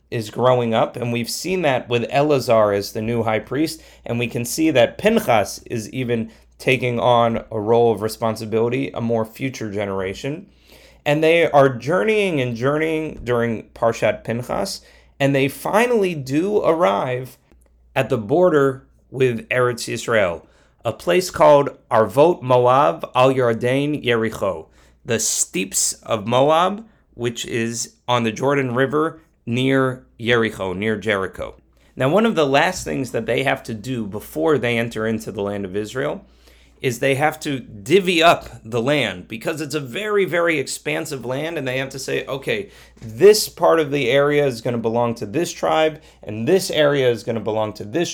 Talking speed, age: 170 wpm, 30-49